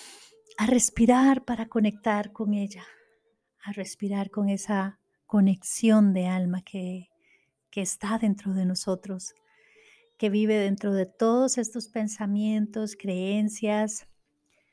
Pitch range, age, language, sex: 195-230 Hz, 40-59, Spanish, female